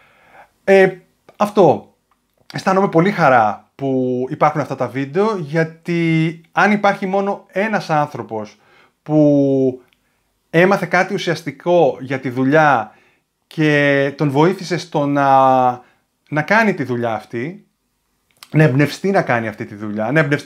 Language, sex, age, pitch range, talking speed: Greek, male, 30-49, 135-180 Hz, 120 wpm